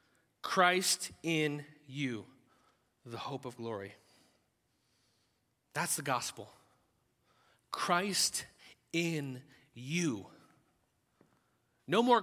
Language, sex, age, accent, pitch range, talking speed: English, male, 30-49, American, 180-245 Hz, 75 wpm